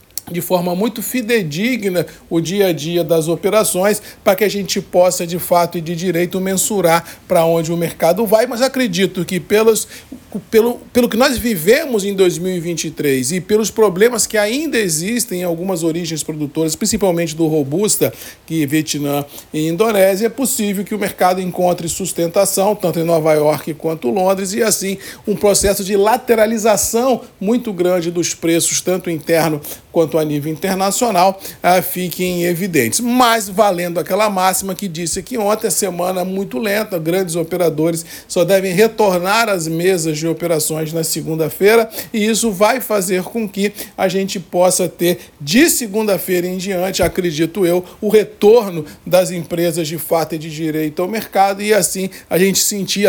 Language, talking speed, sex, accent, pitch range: Portuguese, 160 wpm, male, Brazilian, 170-210 Hz